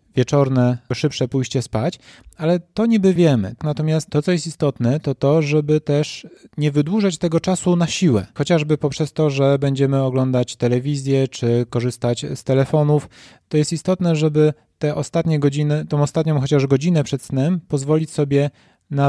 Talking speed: 155 wpm